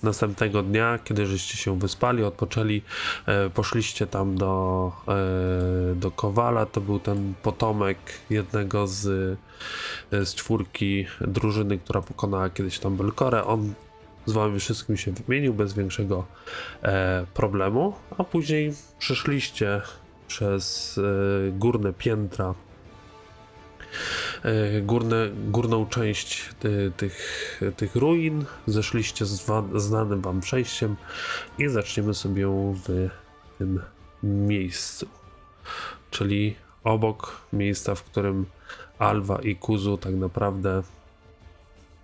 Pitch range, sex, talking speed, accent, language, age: 95-110 Hz, male, 110 wpm, native, Polish, 20-39